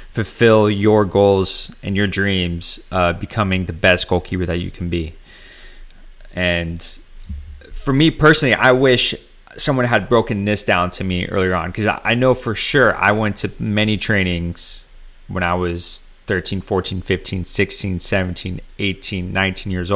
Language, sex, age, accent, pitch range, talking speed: English, male, 30-49, American, 90-105 Hz, 155 wpm